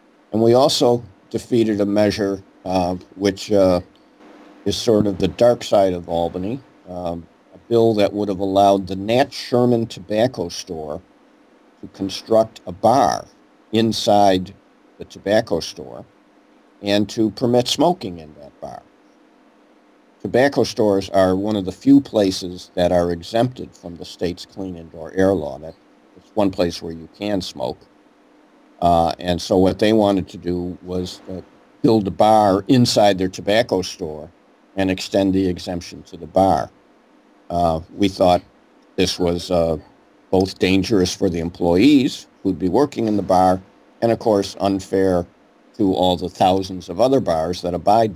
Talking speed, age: 155 wpm, 50-69